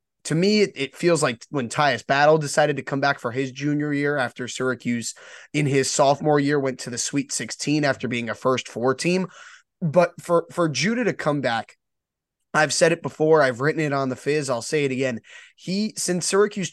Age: 20-39